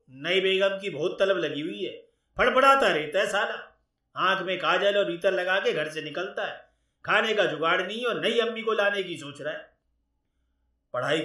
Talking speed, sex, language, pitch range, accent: 195 wpm, male, Hindi, 155-220 Hz, native